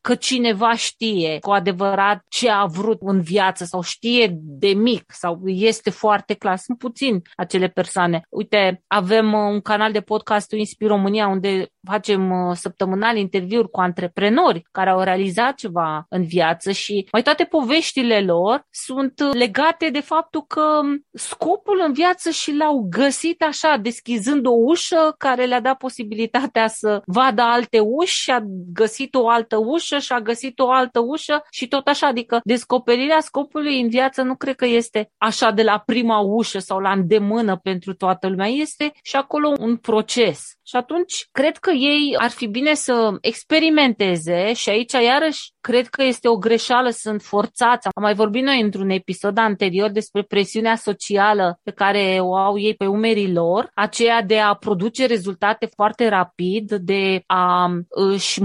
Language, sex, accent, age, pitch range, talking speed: Romanian, female, native, 30-49, 200-260 Hz, 165 wpm